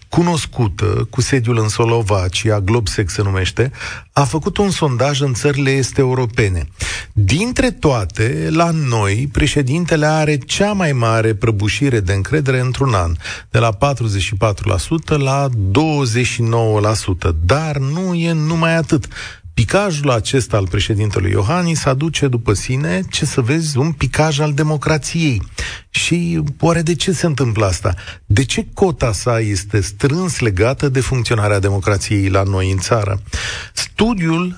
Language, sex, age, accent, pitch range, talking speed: Romanian, male, 40-59, native, 105-155 Hz, 135 wpm